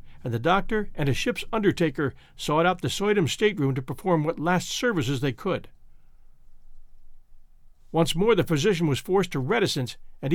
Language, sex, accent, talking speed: English, male, American, 160 wpm